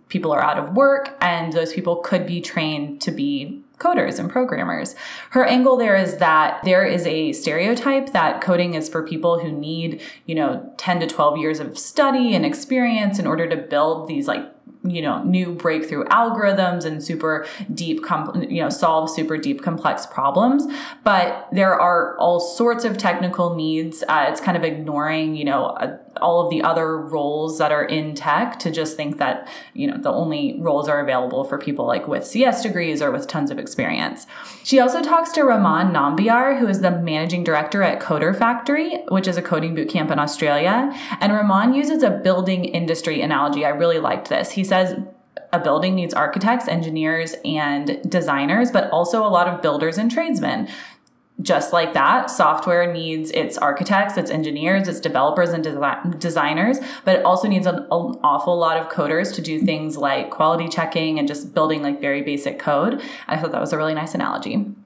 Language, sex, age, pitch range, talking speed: English, female, 20-39, 160-230 Hz, 190 wpm